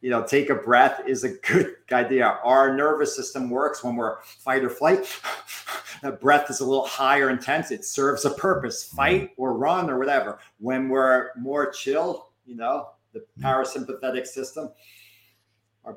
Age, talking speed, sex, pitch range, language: 40-59, 165 wpm, male, 120-155 Hz, English